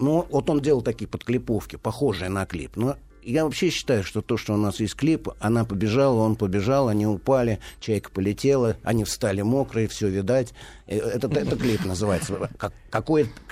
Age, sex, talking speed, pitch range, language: 50-69, male, 165 wpm, 95-130 Hz, Russian